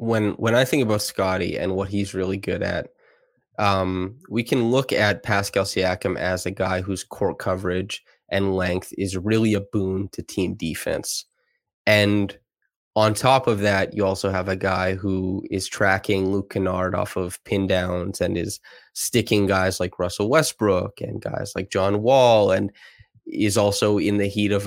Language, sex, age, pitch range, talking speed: English, male, 20-39, 95-105 Hz, 175 wpm